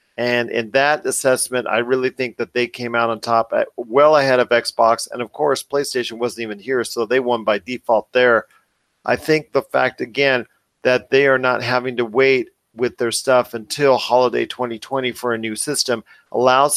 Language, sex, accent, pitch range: English, male, American, 115-135 Hz